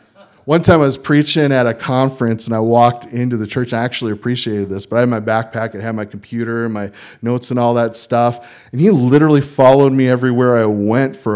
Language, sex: English, male